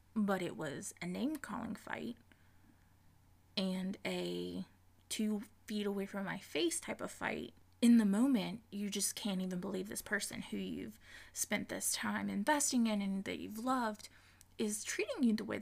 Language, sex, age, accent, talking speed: English, female, 20-39, American, 170 wpm